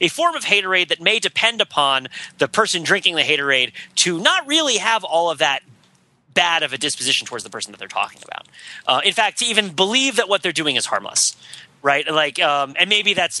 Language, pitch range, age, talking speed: English, 140-205 Hz, 30-49, 220 wpm